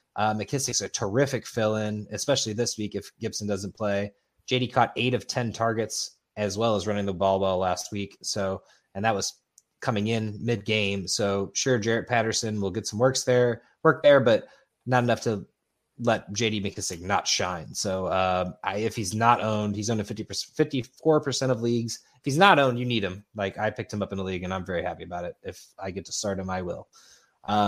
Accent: American